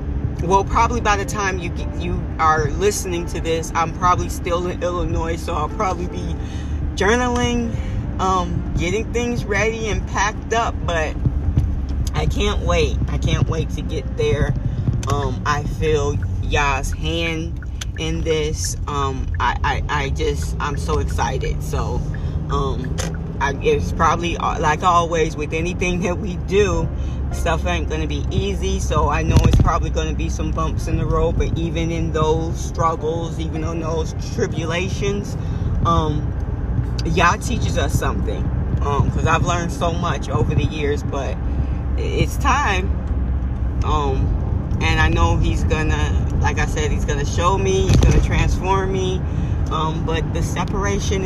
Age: 20-39